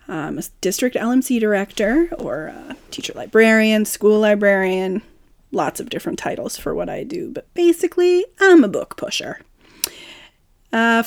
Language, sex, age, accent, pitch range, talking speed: English, female, 30-49, American, 195-290 Hz, 140 wpm